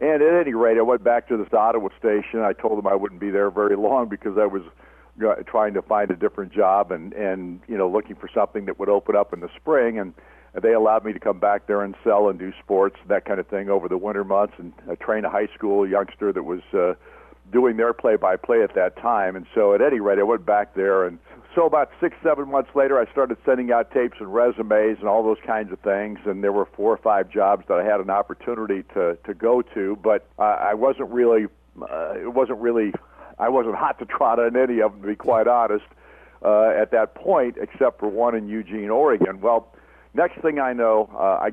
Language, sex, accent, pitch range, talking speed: English, male, American, 100-120 Hz, 235 wpm